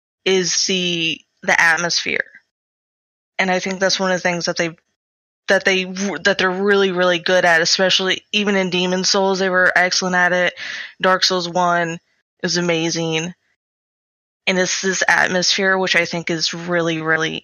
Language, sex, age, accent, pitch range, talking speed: English, female, 20-39, American, 170-185 Hz, 160 wpm